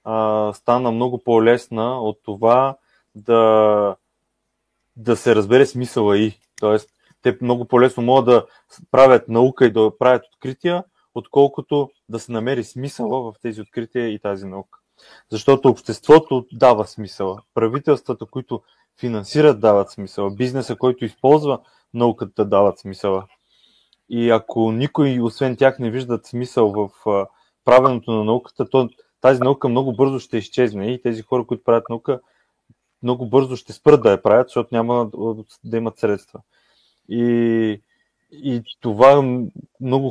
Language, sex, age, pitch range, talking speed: Bulgarian, male, 20-39, 110-130 Hz, 140 wpm